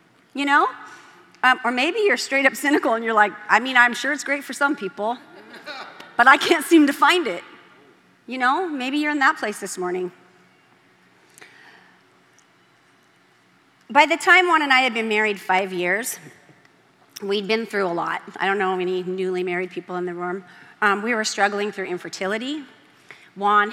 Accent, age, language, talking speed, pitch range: American, 40-59, English, 175 wpm, 195-265 Hz